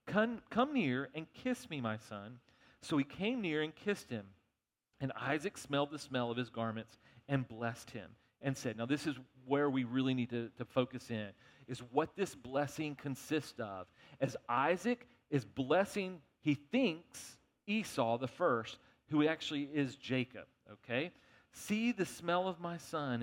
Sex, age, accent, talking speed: male, 40-59, American, 165 wpm